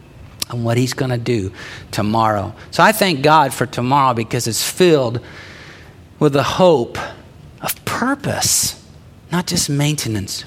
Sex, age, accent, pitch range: male, 50-69, American, 120-175 Hz